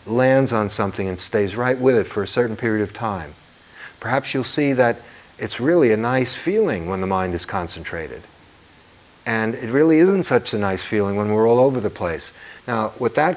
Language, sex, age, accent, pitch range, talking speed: English, male, 50-69, American, 105-130 Hz, 200 wpm